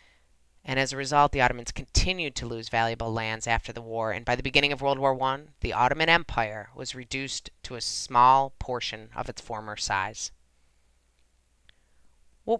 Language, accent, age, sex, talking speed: English, American, 30-49, female, 170 wpm